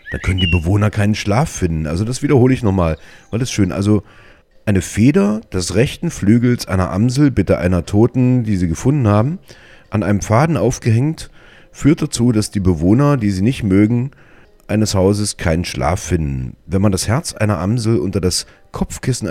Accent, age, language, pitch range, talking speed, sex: German, 40-59, German, 90-120 Hz, 175 wpm, male